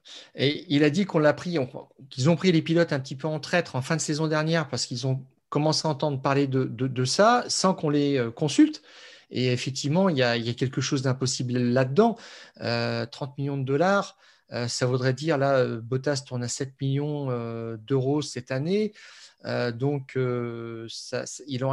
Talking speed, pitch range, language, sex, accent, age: 200 wpm, 135-165 Hz, French, male, French, 40-59